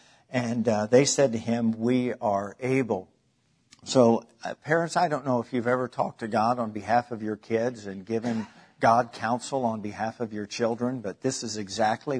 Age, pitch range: 50-69, 110-125 Hz